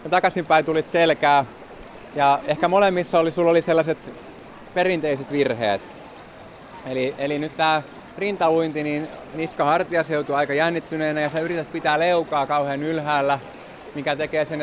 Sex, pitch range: male, 140-170 Hz